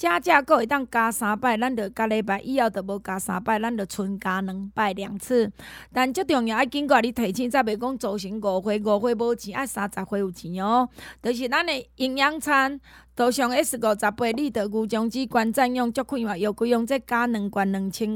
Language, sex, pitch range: Chinese, female, 215-270 Hz